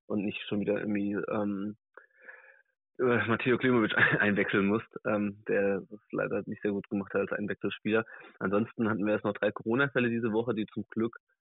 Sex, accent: male, German